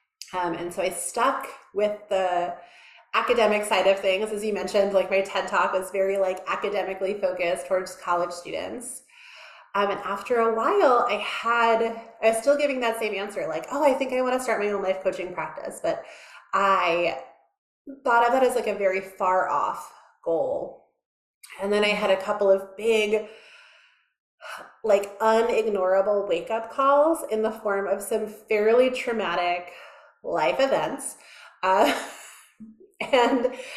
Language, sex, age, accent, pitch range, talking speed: English, female, 30-49, American, 190-235 Hz, 160 wpm